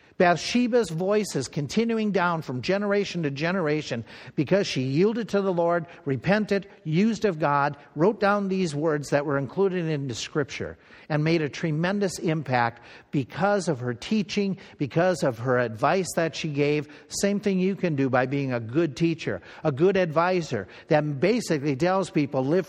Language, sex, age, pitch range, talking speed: English, male, 50-69, 140-190 Hz, 165 wpm